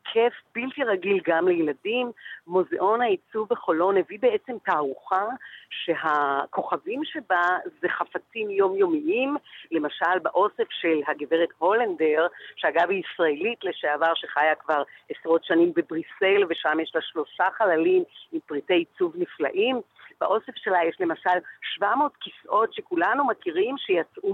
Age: 40-59